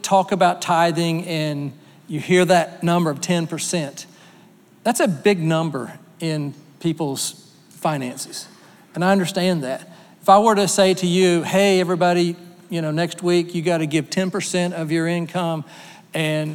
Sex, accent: male, American